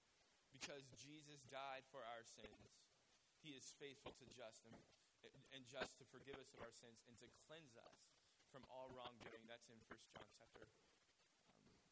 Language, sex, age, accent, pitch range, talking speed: English, male, 20-39, American, 120-150 Hz, 165 wpm